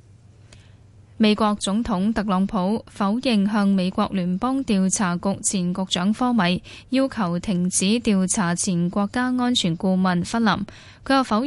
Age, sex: 10-29, female